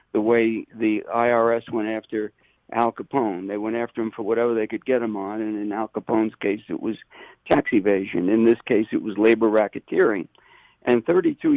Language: English